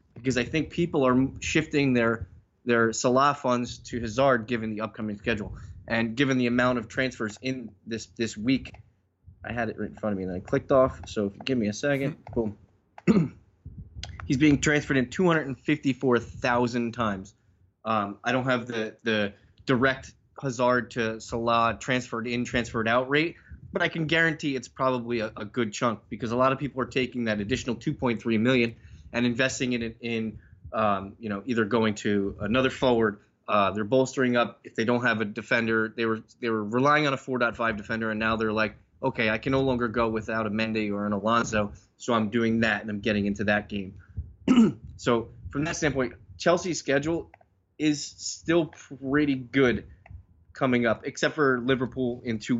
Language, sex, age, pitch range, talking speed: English, male, 20-39, 105-130 Hz, 185 wpm